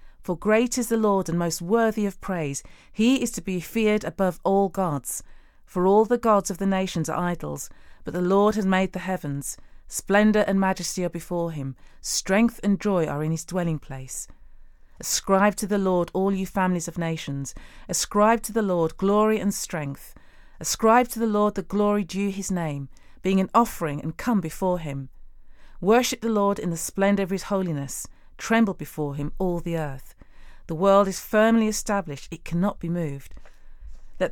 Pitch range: 165-210 Hz